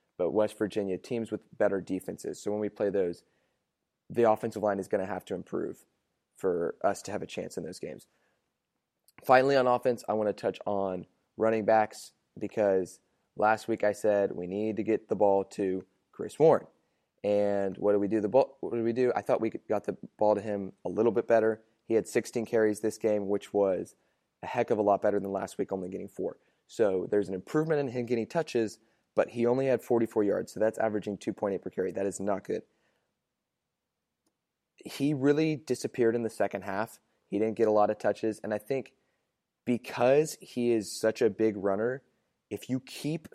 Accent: American